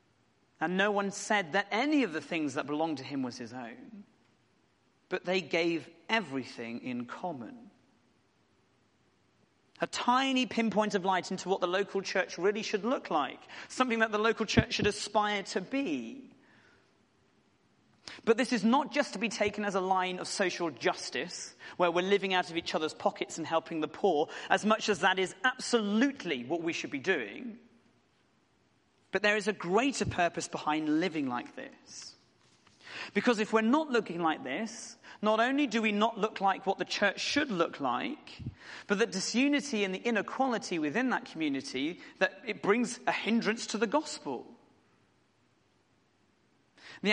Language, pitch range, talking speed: English, 185-245 Hz, 165 wpm